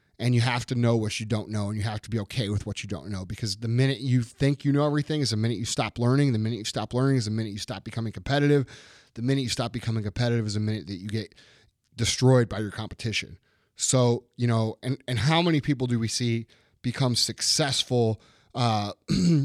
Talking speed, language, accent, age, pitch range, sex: 235 wpm, English, American, 30-49, 115-140 Hz, male